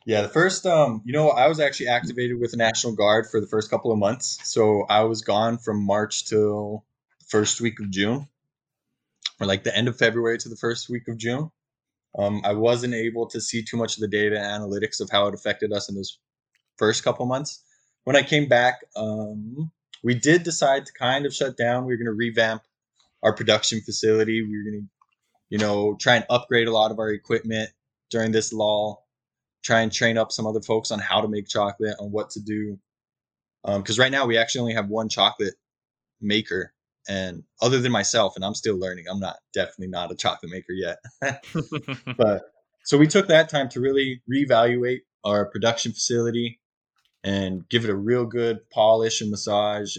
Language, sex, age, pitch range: English, male, 20-39, 105-125 Hz